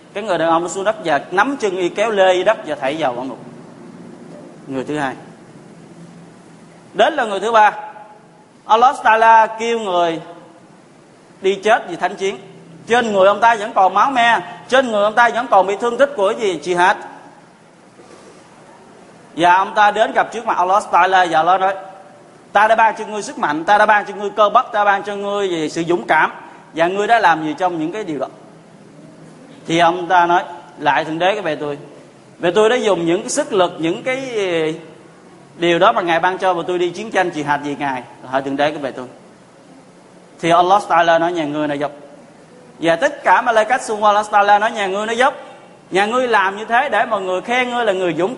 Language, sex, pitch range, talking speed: Vietnamese, male, 170-215 Hz, 220 wpm